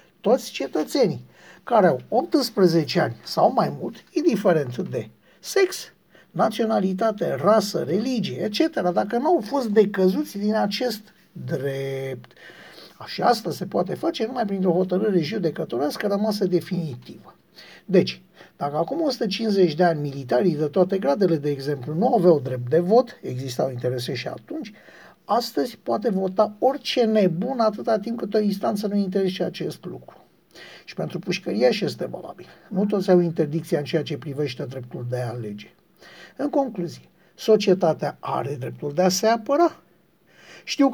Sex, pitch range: male, 165-220 Hz